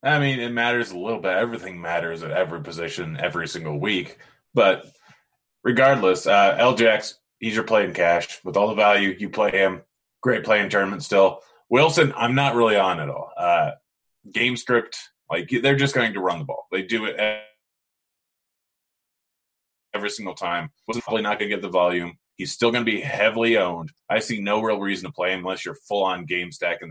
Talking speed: 190 wpm